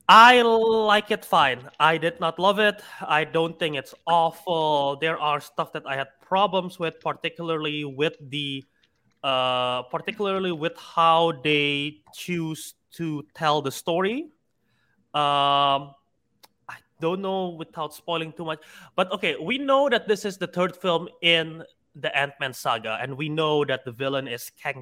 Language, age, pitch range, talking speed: English, 20-39, 140-175 Hz, 160 wpm